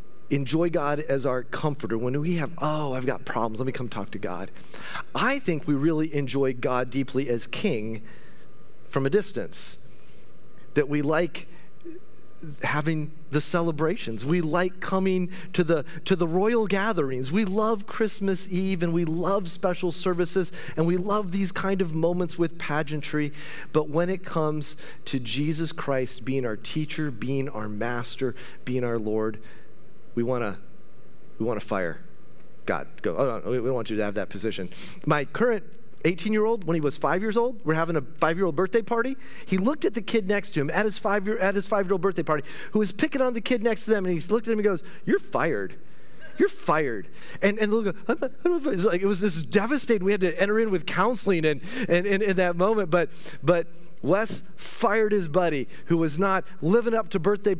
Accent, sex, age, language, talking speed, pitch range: American, male, 40-59, English, 200 wpm, 145-200 Hz